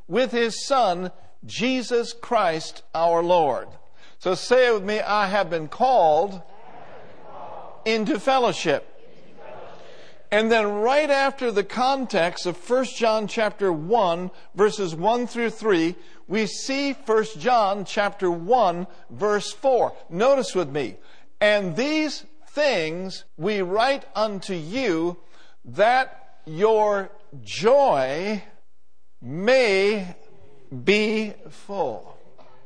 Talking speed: 105 wpm